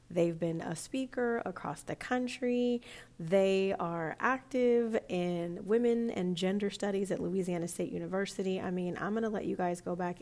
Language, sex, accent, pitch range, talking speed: English, female, American, 175-200 Hz, 165 wpm